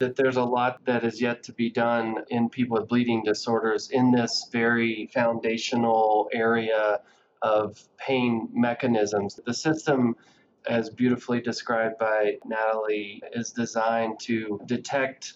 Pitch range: 110-125 Hz